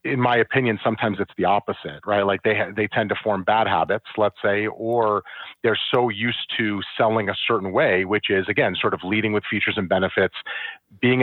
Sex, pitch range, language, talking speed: male, 100-120 Hz, English, 205 wpm